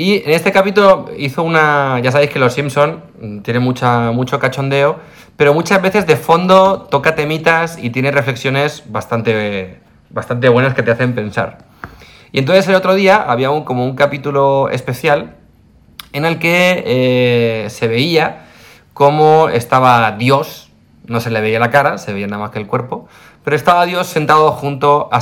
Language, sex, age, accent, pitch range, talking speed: English, male, 30-49, Spanish, 115-150 Hz, 165 wpm